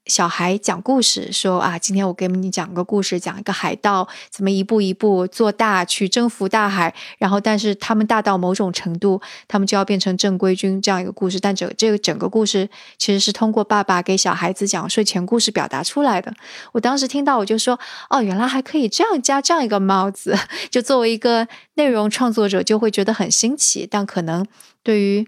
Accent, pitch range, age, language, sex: native, 195-230 Hz, 20-39, Chinese, female